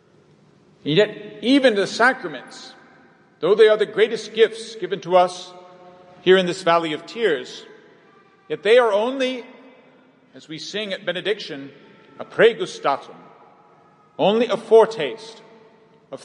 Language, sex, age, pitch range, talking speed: English, male, 50-69, 160-220 Hz, 125 wpm